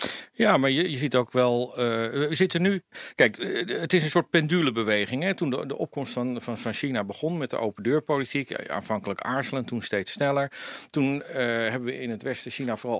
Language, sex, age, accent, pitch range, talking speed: Dutch, male, 50-69, Dutch, 120-175 Hz, 210 wpm